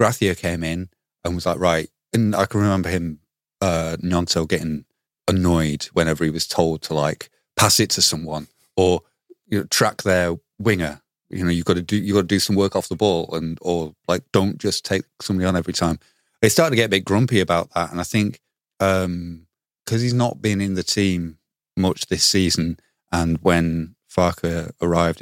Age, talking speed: 30-49, 200 wpm